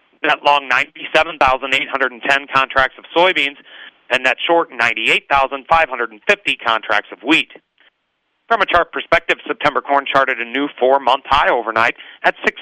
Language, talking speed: English, 185 wpm